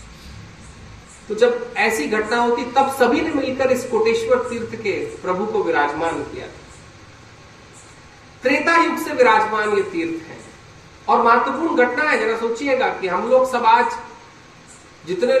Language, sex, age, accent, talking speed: Hindi, male, 40-59, native, 140 wpm